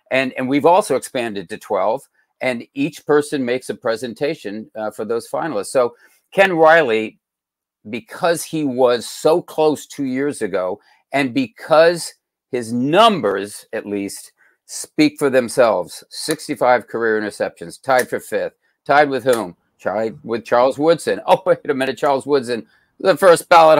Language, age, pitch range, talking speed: English, 50-69, 110-150 Hz, 150 wpm